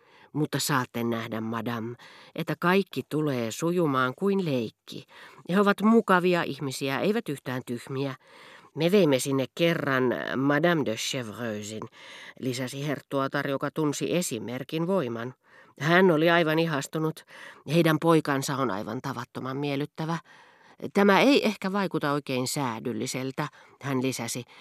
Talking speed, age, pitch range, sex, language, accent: 115 wpm, 40-59, 125-165 Hz, female, Finnish, native